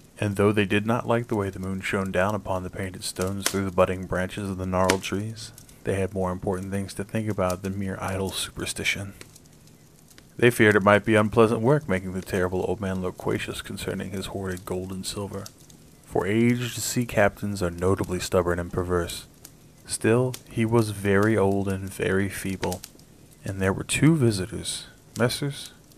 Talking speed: 180 wpm